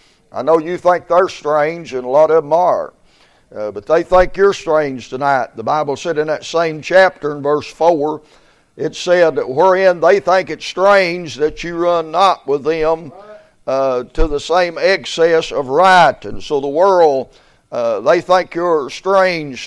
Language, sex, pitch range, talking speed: English, male, 150-180 Hz, 180 wpm